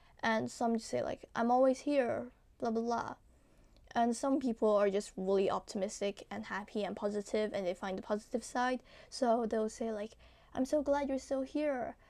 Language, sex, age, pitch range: English, female, 10-29, 215-250 Hz